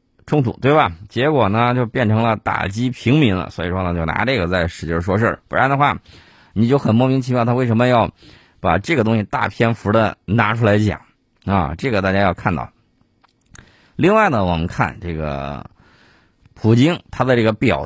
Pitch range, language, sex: 90-125 Hz, Chinese, male